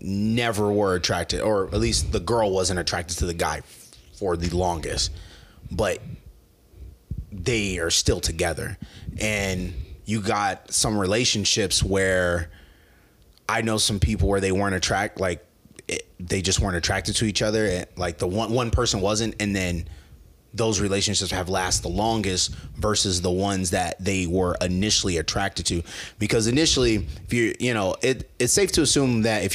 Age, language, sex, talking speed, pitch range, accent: 30-49, English, male, 165 wpm, 90-110 Hz, American